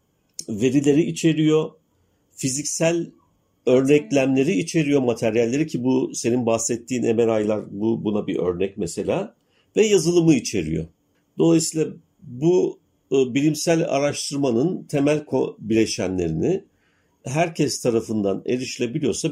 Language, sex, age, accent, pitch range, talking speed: Turkish, male, 50-69, native, 100-145 Hz, 90 wpm